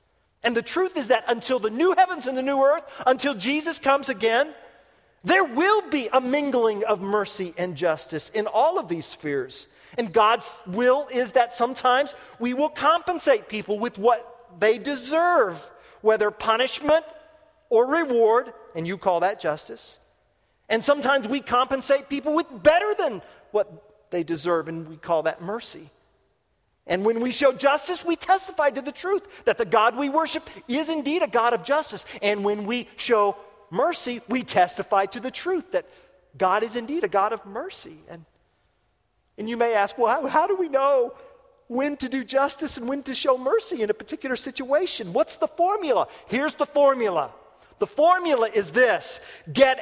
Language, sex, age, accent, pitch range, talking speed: English, male, 40-59, American, 210-300 Hz, 175 wpm